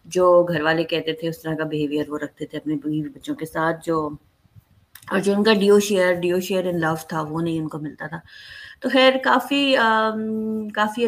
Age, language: 20-39, Urdu